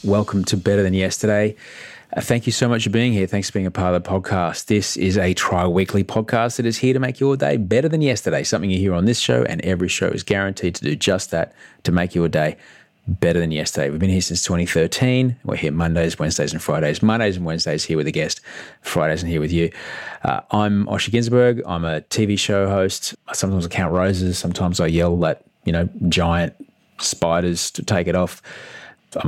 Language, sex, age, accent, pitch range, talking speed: English, male, 30-49, Australian, 85-100 Hz, 220 wpm